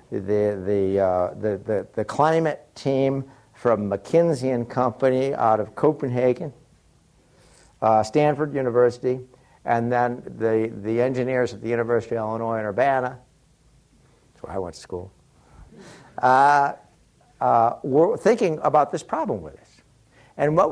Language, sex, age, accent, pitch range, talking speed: English, male, 60-79, American, 110-145 Hz, 135 wpm